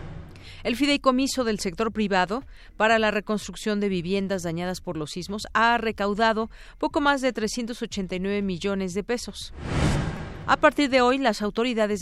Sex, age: female, 40-59